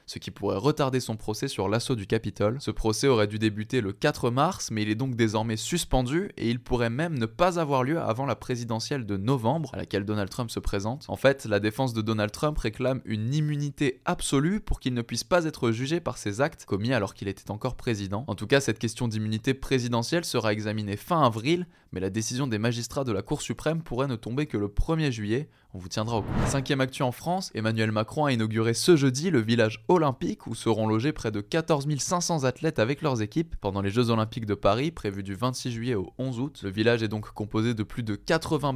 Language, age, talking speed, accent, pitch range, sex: French, 20-39, 230 wpm, French, 110-140 Hz, male